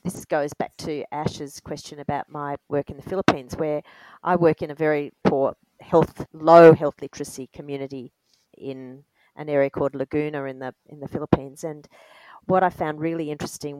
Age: 40-59